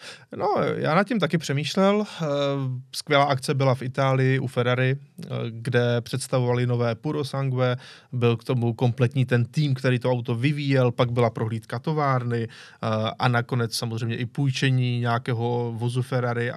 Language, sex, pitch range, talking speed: Czech, male, 125-160 Hz, 145 wpm